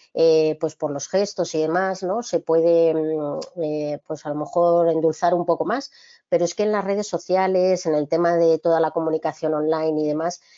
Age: 20-39